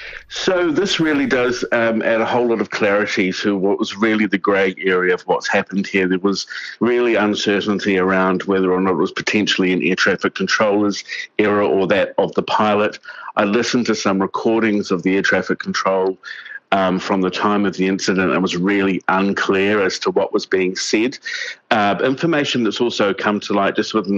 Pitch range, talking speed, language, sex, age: 95-105 Hz, 195 wpm, English, male, 50-69